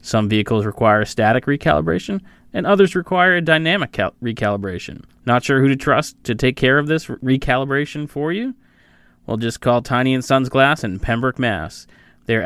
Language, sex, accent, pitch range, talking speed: English, male, American, 110-135 Hz, 170 wpm